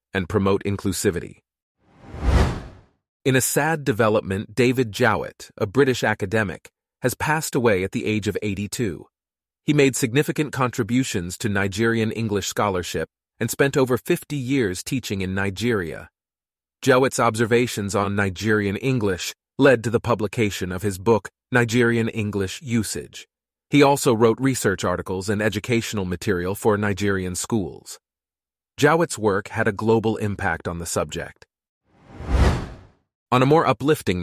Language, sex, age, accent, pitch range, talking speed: English, male, 40-59, American, 95-120 Hz, 130 wpm